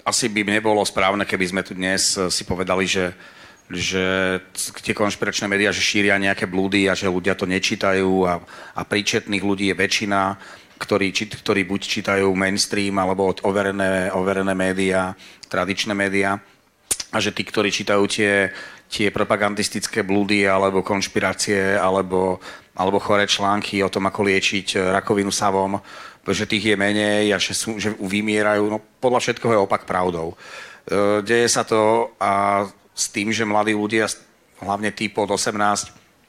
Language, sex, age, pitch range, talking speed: Slovak, male, 40-59, 95-105 Hz, 150 wpm